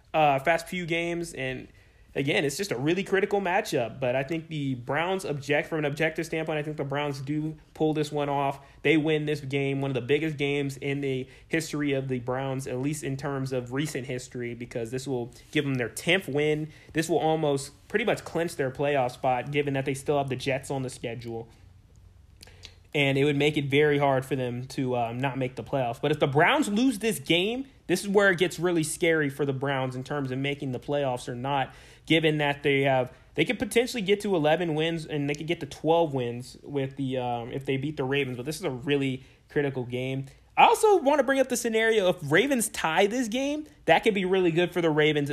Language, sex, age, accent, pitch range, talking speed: English, male, 20-39, American, 130-165 Hz, 230 wpm